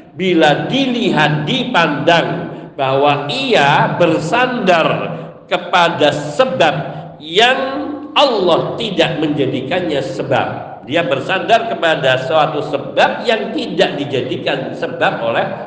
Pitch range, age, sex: 150-200 Hz, 50-69, male